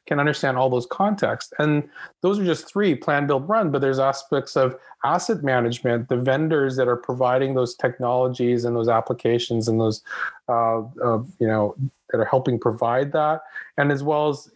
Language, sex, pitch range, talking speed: English, male, 115-135 Hz, 180 wpm